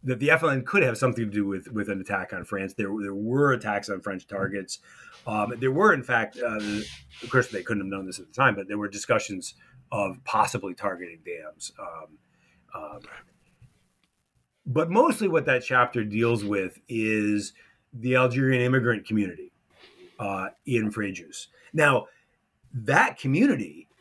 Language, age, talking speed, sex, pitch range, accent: English, 30-49, 160 wpm, male, 105-130 Hz, American